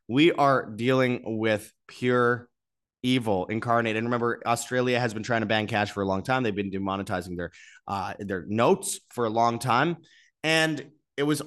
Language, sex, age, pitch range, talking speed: English, male, 20-39, 105-130 Hz, 180 wpm